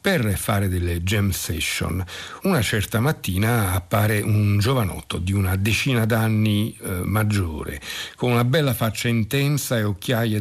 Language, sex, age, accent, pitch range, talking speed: Italian, male, 60-79, native, 95-120 Hz, 135 wpm